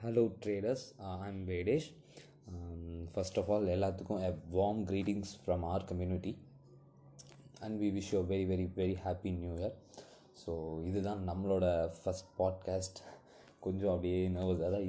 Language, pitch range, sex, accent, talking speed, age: Tamil, 90-105 Hz, male, native, 135 wpm, 20-39